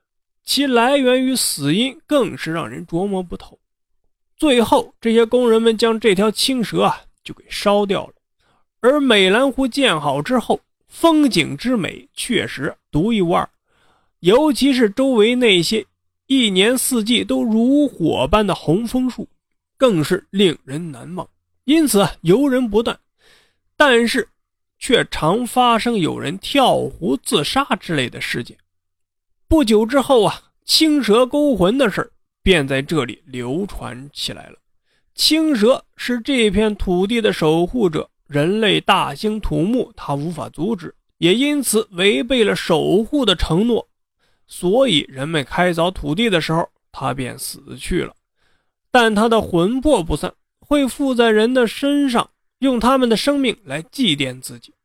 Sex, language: male, Chinese